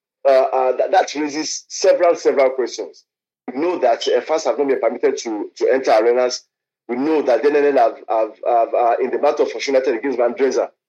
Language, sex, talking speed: English, male, 200 wpm